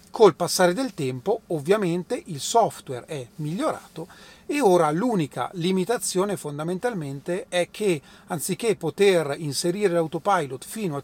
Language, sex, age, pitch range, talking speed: Italian, male, 40-59, 145-195 Hz, 120 wpm